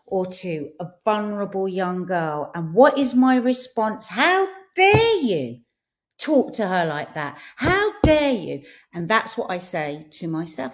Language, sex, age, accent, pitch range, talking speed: English, female, 40-59, British, 180-265 Hz, 160 wpm